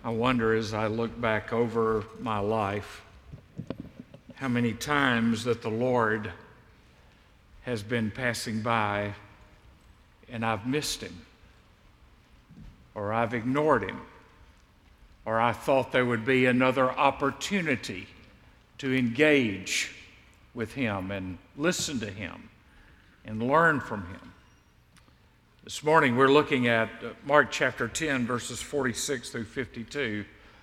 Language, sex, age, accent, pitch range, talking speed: English, male, 60-79, American, 110-135 Hz, 115 wpm